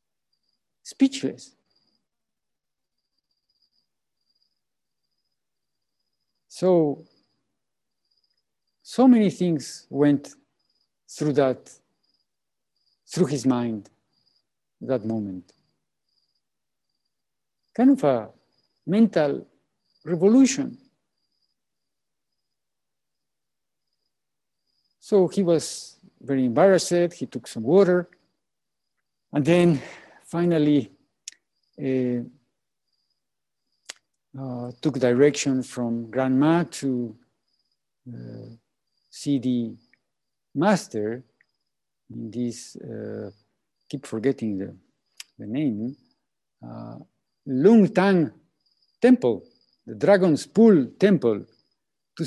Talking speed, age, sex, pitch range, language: 65 wpm, 50-69, male, 125-185 Hz, English